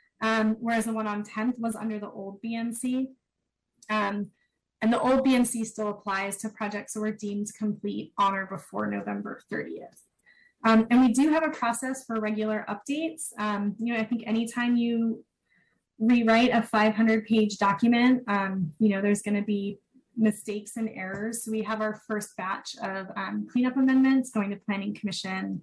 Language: English